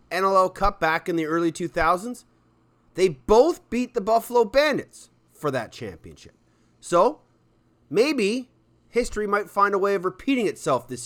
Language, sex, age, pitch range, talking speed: English, male, 30-49, 135-180 Hz, 145 wpm